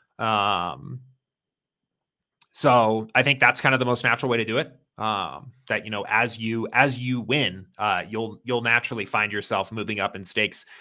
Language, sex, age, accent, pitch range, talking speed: English, male, 30-49, American, 110-135 Hz, 185 wpm